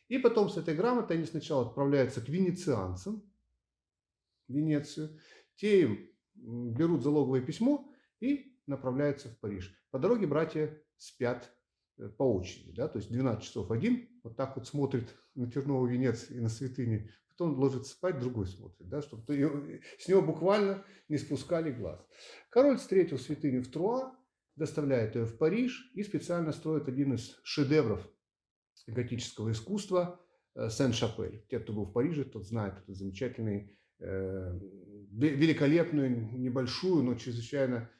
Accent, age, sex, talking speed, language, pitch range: native, 40-59, male, 135 wpm, Russian, 115-160 Hz